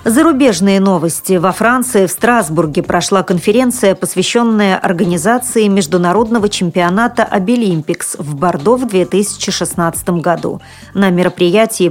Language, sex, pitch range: Russian, female, 175-220 Hz